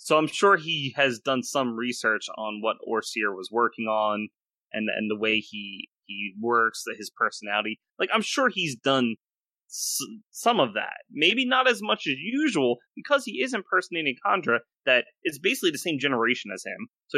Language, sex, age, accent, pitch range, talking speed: English, male, 30-49, American, 110-185 Hz, 180 wpm